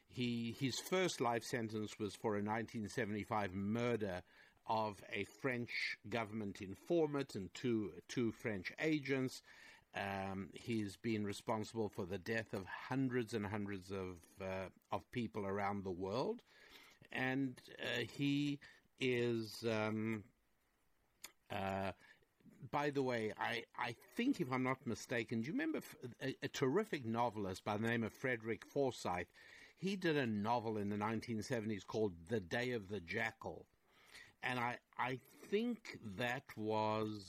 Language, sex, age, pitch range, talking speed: English, male, 60-79, 105-125 Hz, 140 wpm